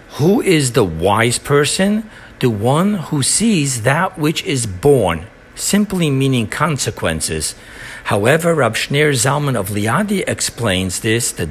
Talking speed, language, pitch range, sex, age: 125 wpm, English, 115-155 Hz, male, 60-79